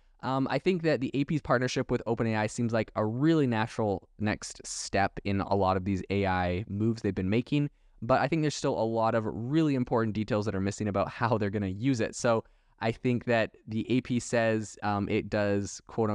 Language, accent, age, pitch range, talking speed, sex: English, American, 20-39, 100-120 Hz, 215 wpm, male